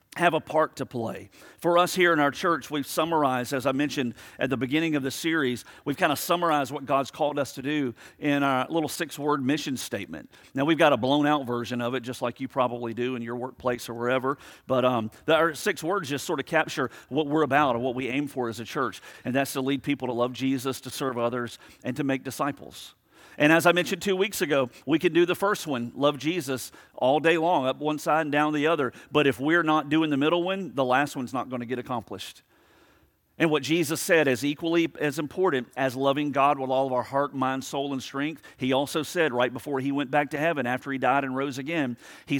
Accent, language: American, English